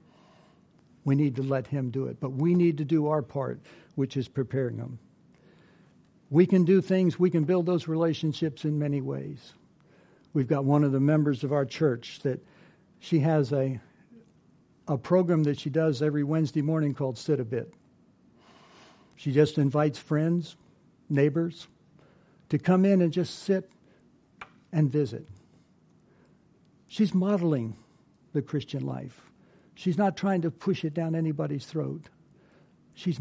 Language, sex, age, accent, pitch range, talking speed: English, male, 60-79, American, 140-180 Hz, 150 wpm